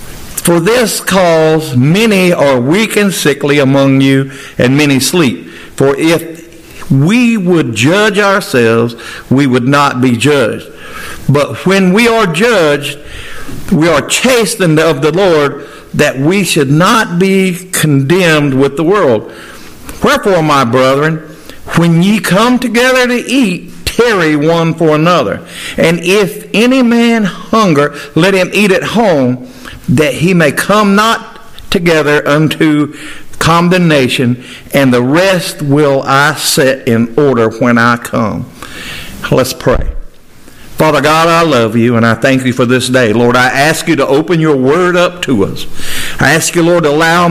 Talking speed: 145 wpm